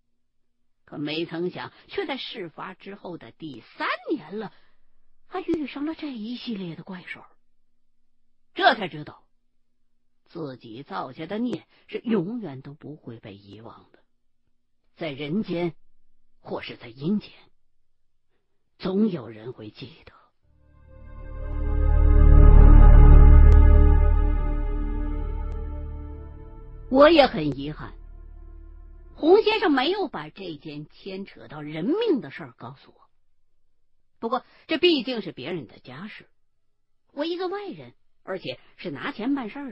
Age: 50-69